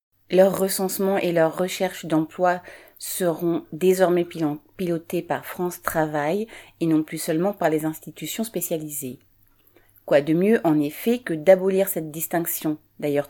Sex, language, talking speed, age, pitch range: female, French, 135 wpm, 30-49, 150-185 Hz